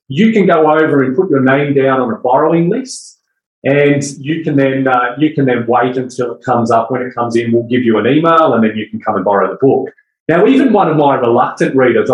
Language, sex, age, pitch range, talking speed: English, male, 30-49, 125-160 Hz, 235 wpm